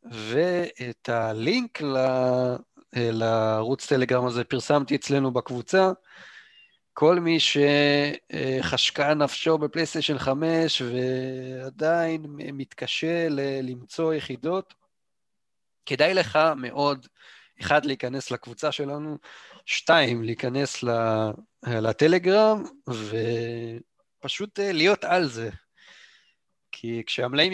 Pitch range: 125-160 Hz